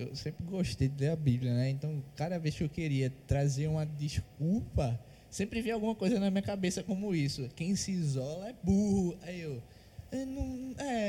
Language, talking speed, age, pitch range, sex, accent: Portuguese, 195 wpm, 20-39, 135-195 Hz, male, Brazilian